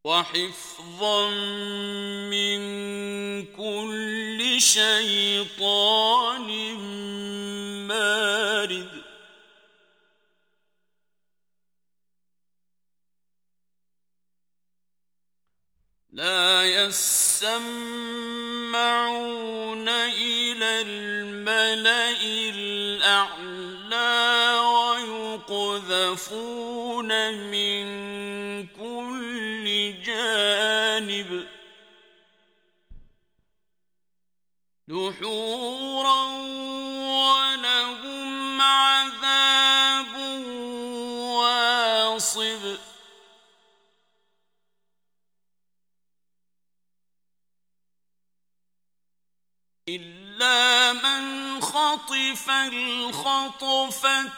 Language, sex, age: Arabic, male, 50-69